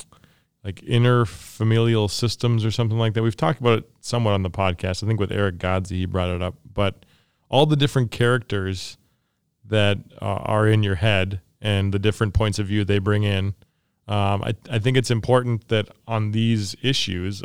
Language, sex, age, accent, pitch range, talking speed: English, male, 30-49, American, 100-115 Hz, 185 wpm